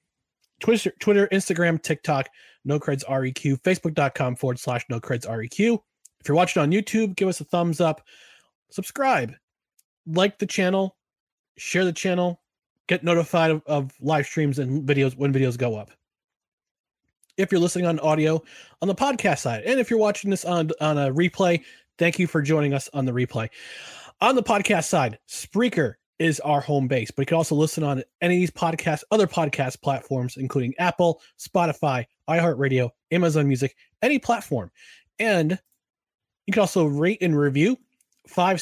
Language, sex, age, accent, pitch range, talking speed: English, male, 30-49, American, 140-185 Hz, 165 wpm